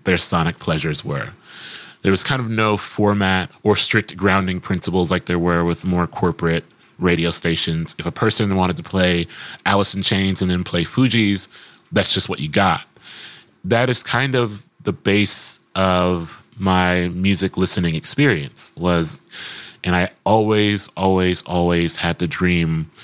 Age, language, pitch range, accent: 30-49, English, 85-95 Hz, American